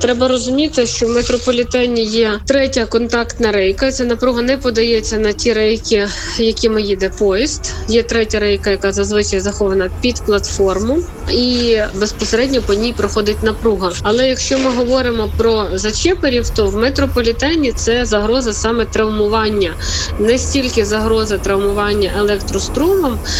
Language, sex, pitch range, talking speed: Ukrainian, female, 200-240 Hz, 130 wpm